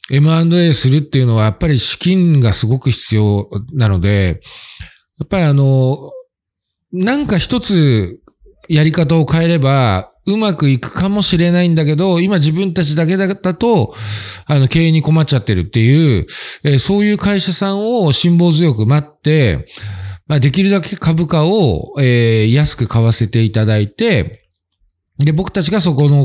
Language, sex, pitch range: Japanese, male, 115-170 Hz